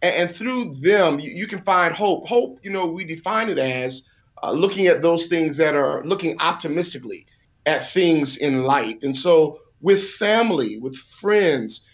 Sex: male